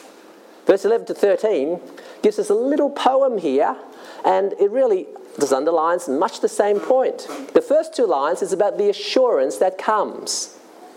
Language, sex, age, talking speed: English, male, 50-69, 160 wpm